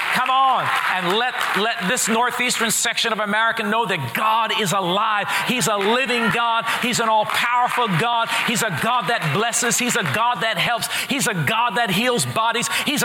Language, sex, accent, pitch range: English, male, American, 200-240 Hz